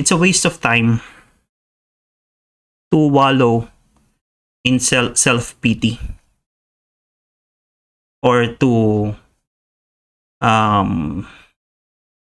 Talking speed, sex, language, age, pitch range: 60 wpm, male, English, 30-49, 100-125 Hz